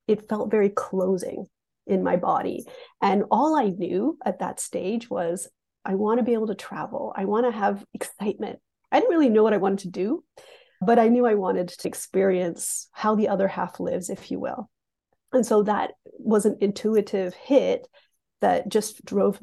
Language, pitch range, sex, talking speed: English, 190-245 Hz, female, 190 wpm